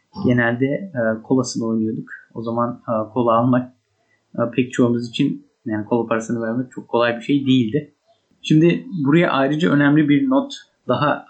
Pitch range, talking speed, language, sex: 115-135 Hz, 140 wpm, Turkish, male